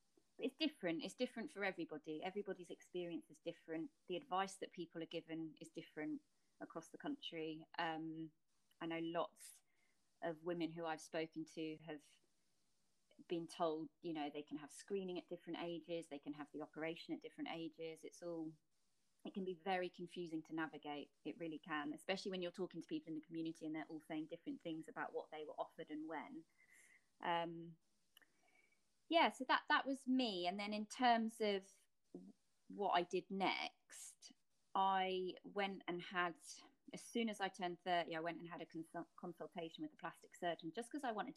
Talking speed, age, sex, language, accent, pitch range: 185 wpm, 20-39, female, English, British, 160-195 Hz